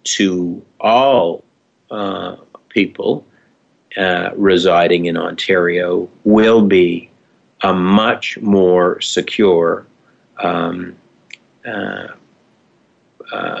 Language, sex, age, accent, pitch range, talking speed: English, male, 50-69, American, 90-110 Hz, 75 wpm